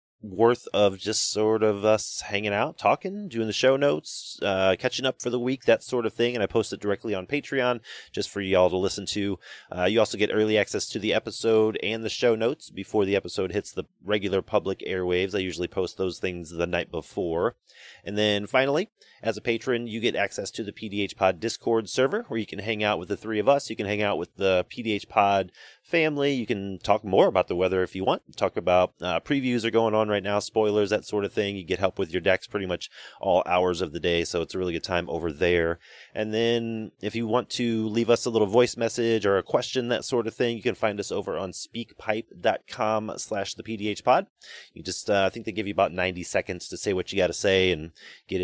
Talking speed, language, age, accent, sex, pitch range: 240 wpm, English, 30-49, American, male, 95-115 Hz